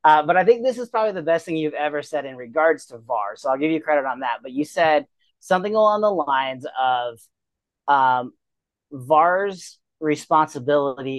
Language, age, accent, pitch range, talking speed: English, 30-49, American, 140-165 Hz, 190 wpm